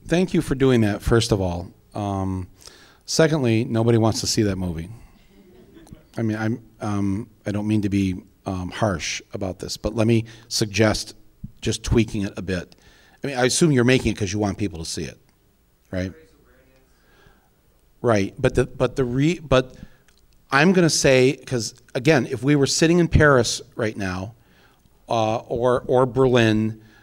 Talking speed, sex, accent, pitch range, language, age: 175 wpm, male, American, 110-150 Hz, English, 40-59